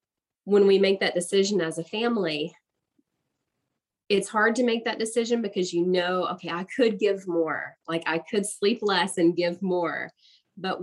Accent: American